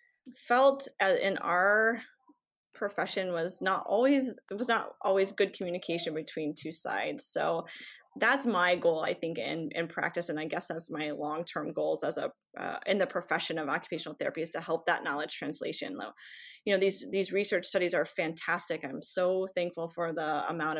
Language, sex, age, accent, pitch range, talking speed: English, female, 20-39, American, 165-210 Hz, 180 wpm